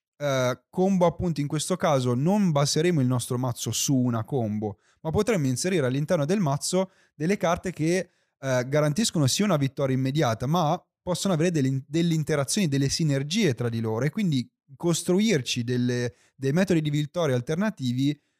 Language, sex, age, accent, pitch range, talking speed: Italian, male, 30-49, native, 130-175 Hz, 150 wpm